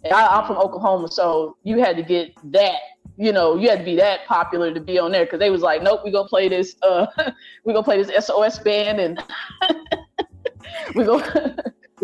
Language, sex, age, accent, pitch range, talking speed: English, female, 20-39, American, 185-250 Hz, 205 wpm